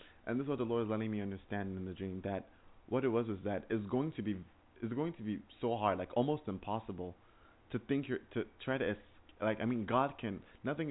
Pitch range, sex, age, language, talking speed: 95-120 Hz, male, 20-39, English, 225 wpm